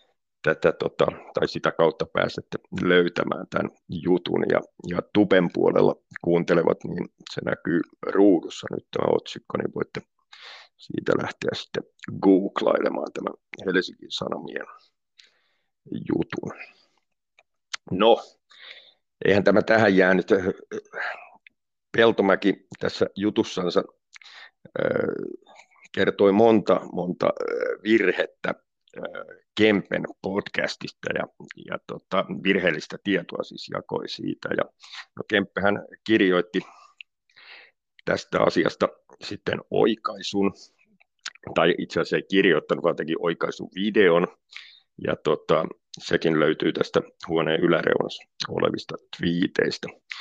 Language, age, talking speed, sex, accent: Finnish, 50-69, 90 wpm, male, native